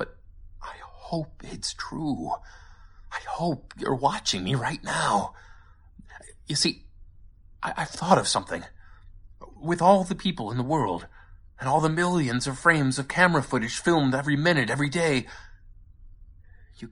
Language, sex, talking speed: English, male, 140 wpm